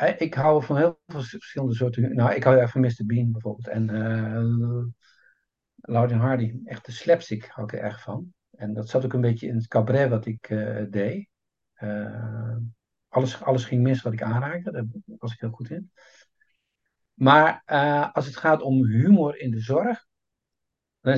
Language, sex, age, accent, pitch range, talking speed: Dutch, male, 60-79, Dutch, 115-130 Hz, 185 wpm